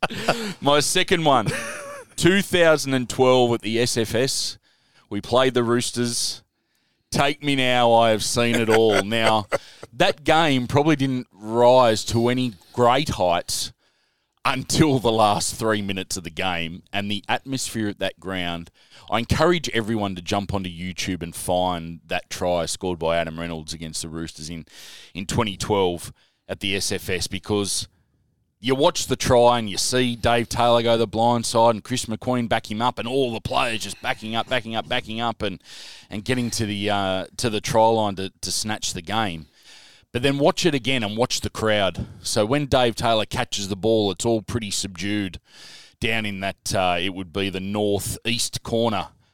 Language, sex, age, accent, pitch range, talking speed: English, male, 20-39, Australian, 95-125 Hz, 175 wpm